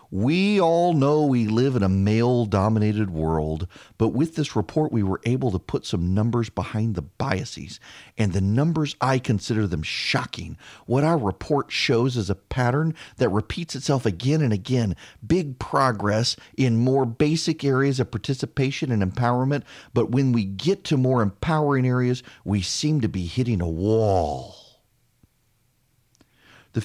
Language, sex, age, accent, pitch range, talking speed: English, male, 40-59, American, 105-145 Hz, 155 wpm